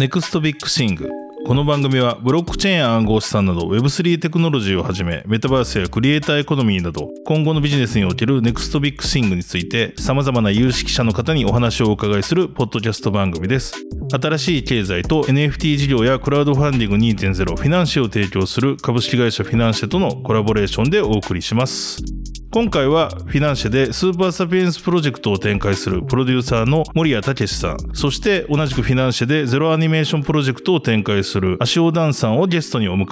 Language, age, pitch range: Japanese, 20-39, 105-150 Hz